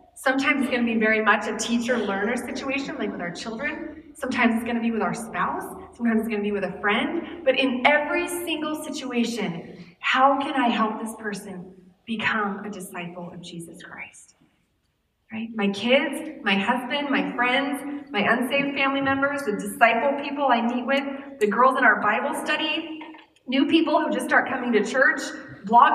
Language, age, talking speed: English, 20-39, 185 wpm